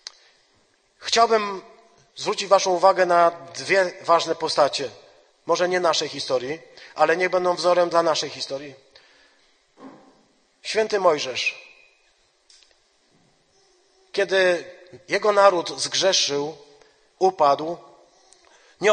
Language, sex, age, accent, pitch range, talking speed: Polish, male, 40-59, native, 165-210 Hz, 85 wpm